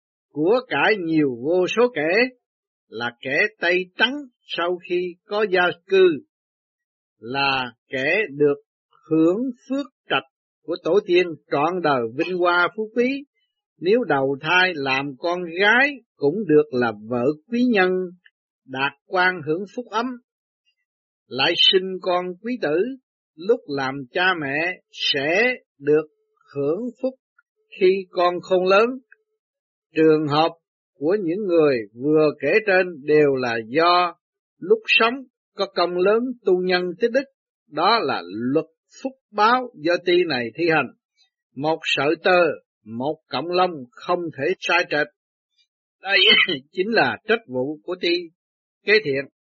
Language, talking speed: Vietnamese, 135 wpm